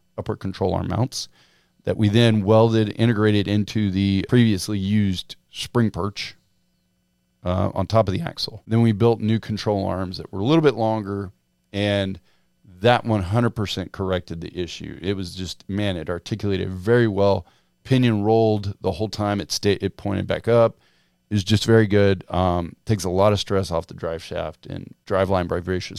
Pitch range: 95-115 Hz